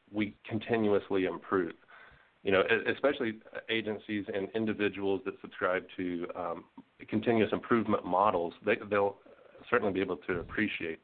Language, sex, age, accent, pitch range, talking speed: English, male, 40-59, American, 95-110 Hz, 125 wpm